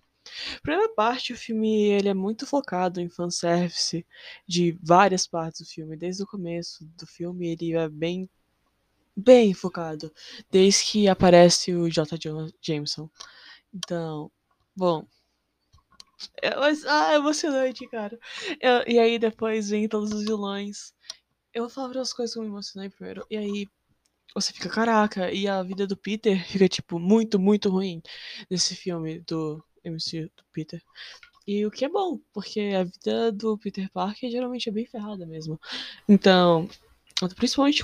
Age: 20-39